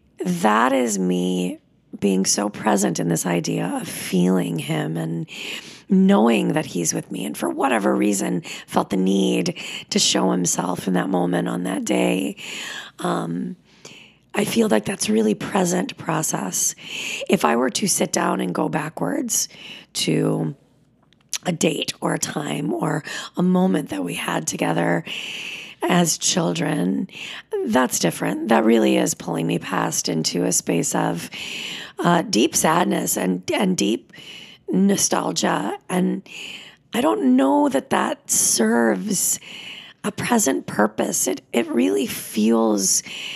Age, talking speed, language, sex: 30-49, 140 wpm, English, female